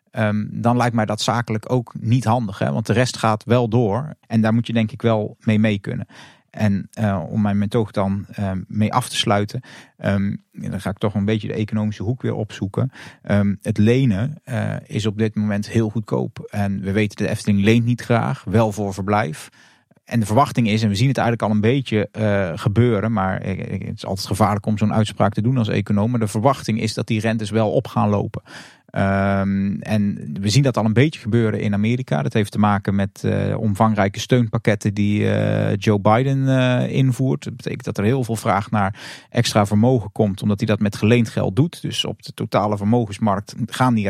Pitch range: 105-125 Hz